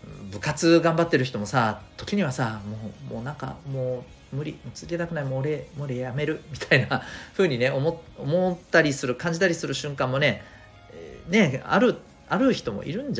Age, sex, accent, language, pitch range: 40-59, male, native, Japanese, 100-155 Hz